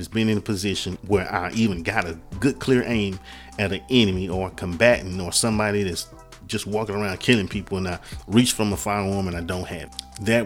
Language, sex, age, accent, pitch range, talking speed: English, male, 30-49, American, 90-110 Hz, 225 wpm